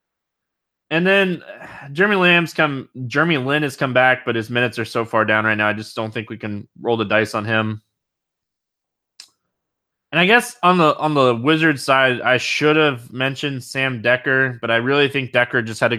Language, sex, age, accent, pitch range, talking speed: English, male, 20-39, American, 120-155 Hz, 200 wpm